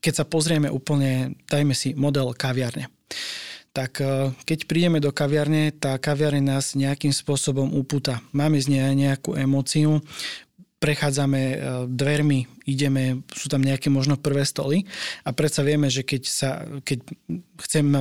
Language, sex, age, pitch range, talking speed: Slovak, male, 20-39, 135-150 Hz, 135 wpm